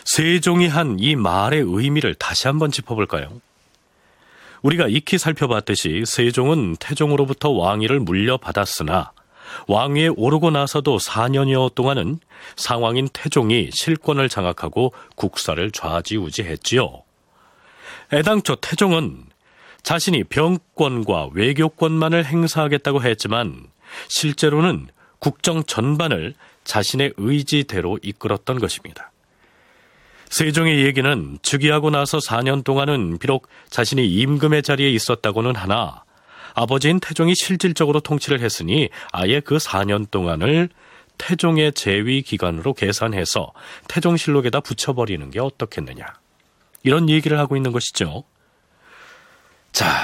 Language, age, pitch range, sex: Korean, 40-59, 110-155 Hz, male